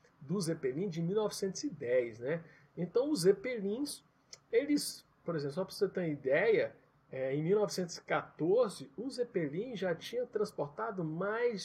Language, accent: Portuguese, Brazilian